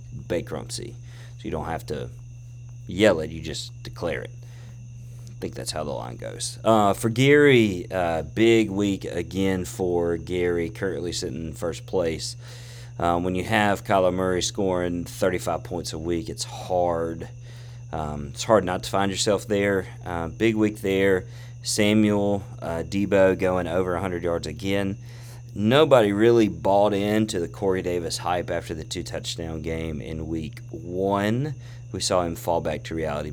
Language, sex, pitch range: English, male, 90-120 Hz